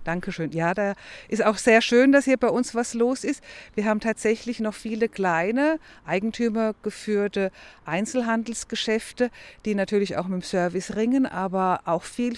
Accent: German